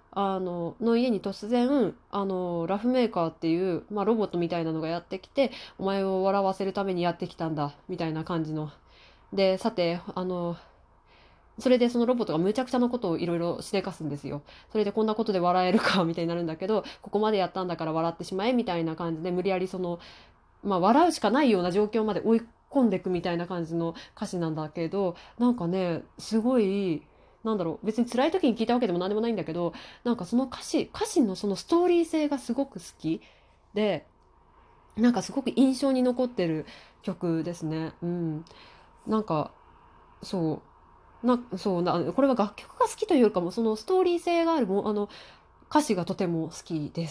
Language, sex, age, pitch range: Japanese, female, 20-39, 170-240 Hz